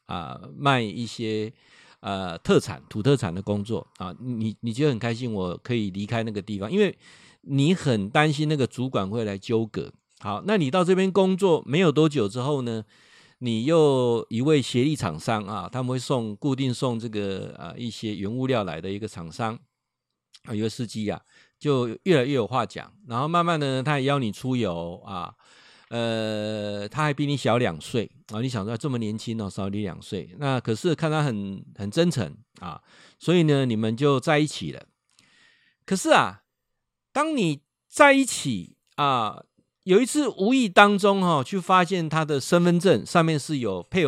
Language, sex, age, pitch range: Chinese, male, 50-69, 110-155 Hz